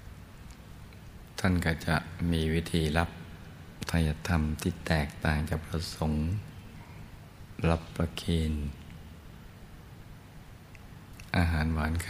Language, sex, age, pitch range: Thai, male, 60-79, 80-90 Hz